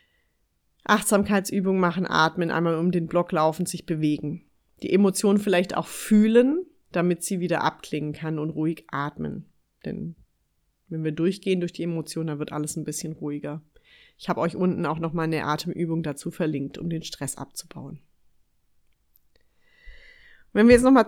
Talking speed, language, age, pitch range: 155 wpm, German, 30-49, 160-205 Hz